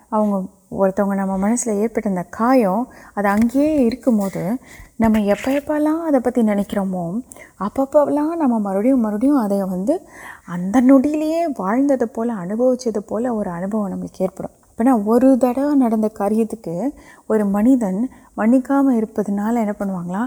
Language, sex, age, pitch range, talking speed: Urdu, female, 30-49, 205-265 Hz, 80 wpm